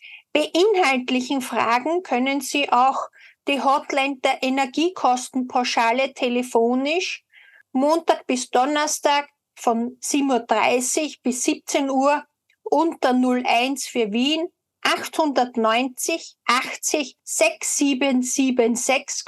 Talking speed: 80 wpm